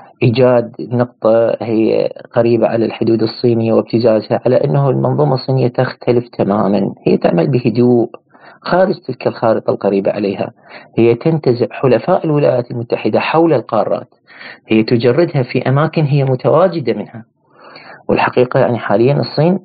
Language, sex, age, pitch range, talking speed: Arabic, male, 40-59, 115-140 Hz, 120 wpm